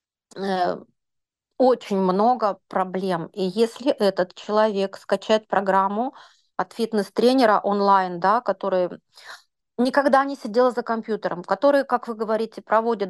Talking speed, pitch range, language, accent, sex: 110 wpm, 190-225 Hz, Russian, native, female